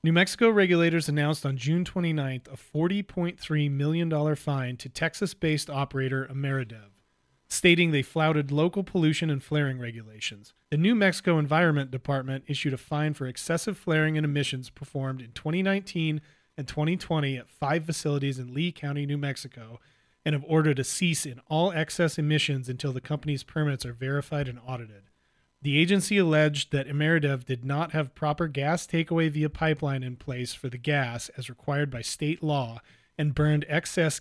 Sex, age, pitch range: male, 30-49, 135-160 Hz